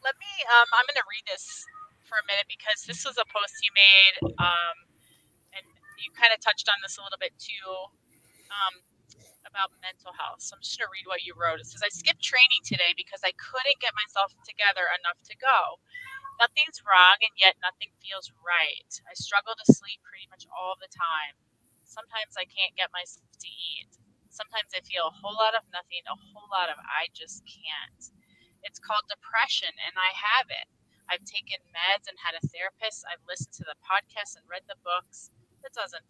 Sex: female